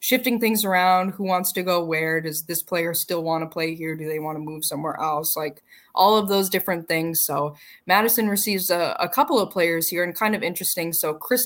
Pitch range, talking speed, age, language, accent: 165-195 Hz, 230 wpm, 10-29, English, American